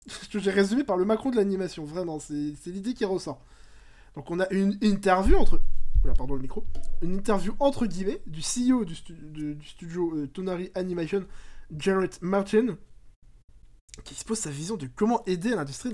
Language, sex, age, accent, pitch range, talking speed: French, male, 20-39, French, 155-210 Hz, 185 wpm